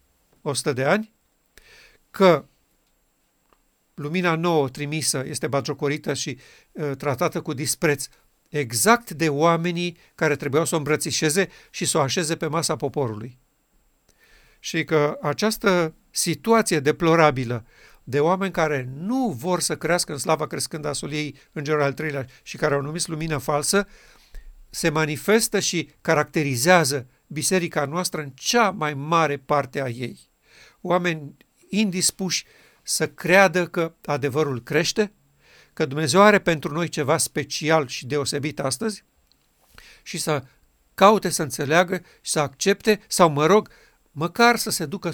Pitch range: 145-180 Hz